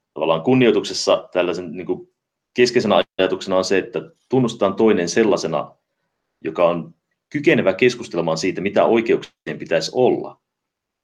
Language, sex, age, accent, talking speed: Finnish, male, 30-49, native, 110 wpm